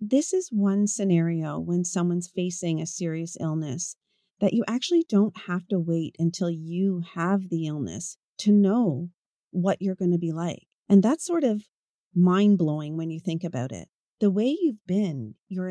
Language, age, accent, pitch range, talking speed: English, 40-59, American, 170-210 Hz, 175 wpm